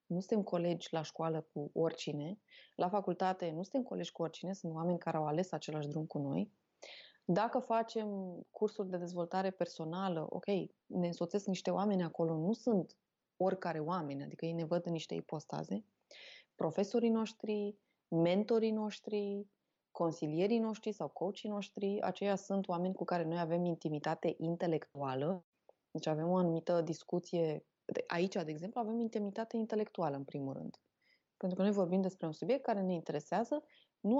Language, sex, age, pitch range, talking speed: Romanian, female, 20-39, 165-215 Hz, 155 wpm